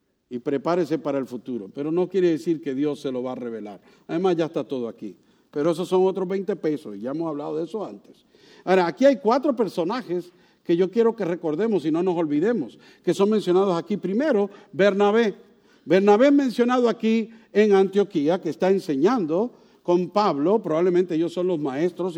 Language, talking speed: English, 185 wpm